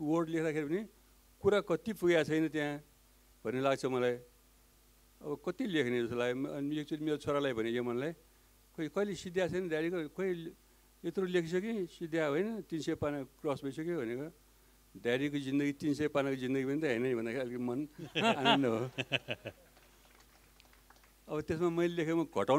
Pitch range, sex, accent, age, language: 120-165 Hz, male, Indian, 60-79, English